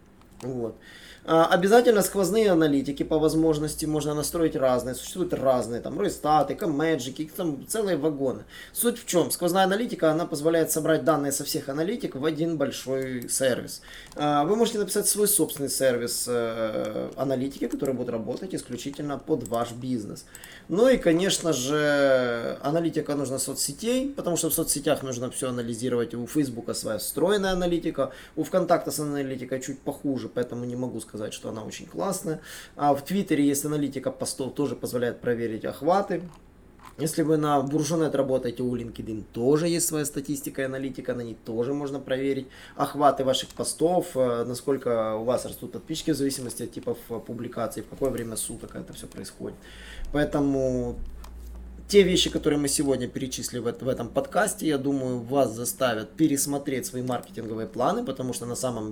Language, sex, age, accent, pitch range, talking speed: Russian, male, 20-39, native, 125-160 Hz, 150 wpm